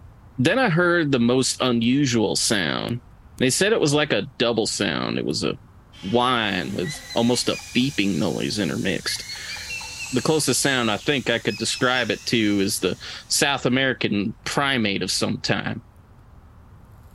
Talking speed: 150 wpm